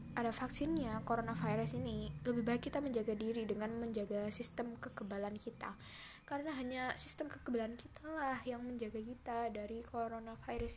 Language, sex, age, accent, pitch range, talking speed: Indonesian, female, 10-29, native, 220-245 Hz, 135 wpm